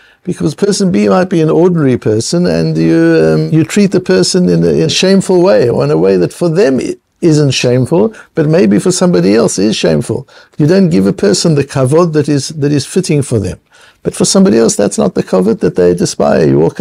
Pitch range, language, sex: 125-185 Hz, English, male